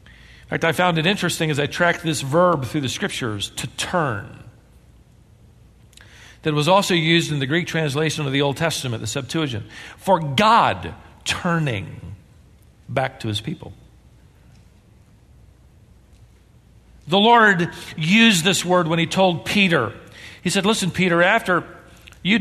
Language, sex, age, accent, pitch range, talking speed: English, male, 50-69, American, 150-225 Hz, 140 wpm